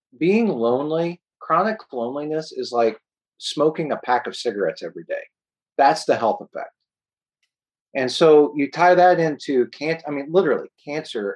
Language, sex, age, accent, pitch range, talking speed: English, male, 40-59, American, 120-160 Hz, 150 wpm